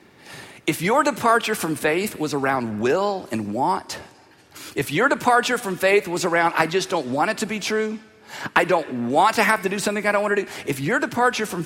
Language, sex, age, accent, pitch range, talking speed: English, male, 50-69, American, 170-265 Hz, 210 wpm